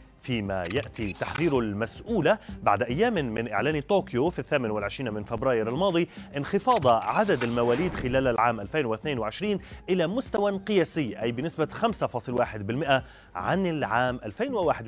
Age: 30-49